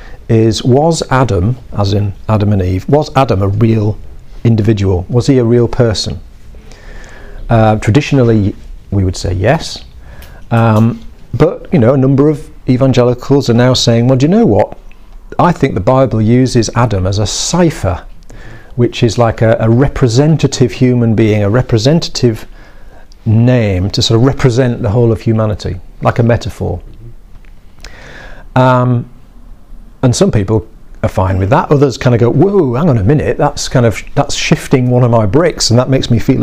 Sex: male